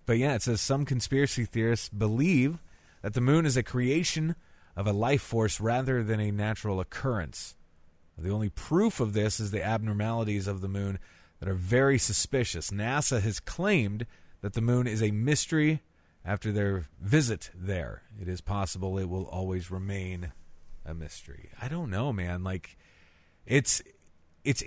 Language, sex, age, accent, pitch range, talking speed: English, male, 30-49, American, 85-125 Hz, 165 wpm